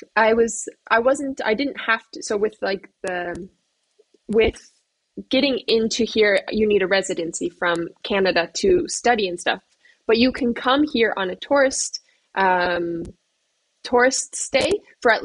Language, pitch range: Slovak, 195-255 Hz